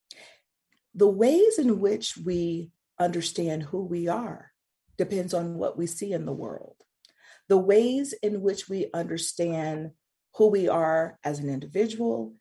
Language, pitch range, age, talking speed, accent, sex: English, 155-230 Hz, 40-59, 140 wpm, American, female